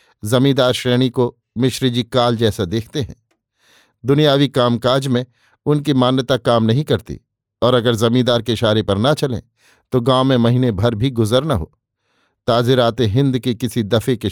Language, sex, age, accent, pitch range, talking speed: Hindi, male, 50-69, native, 115-130 Hz, 170 wpm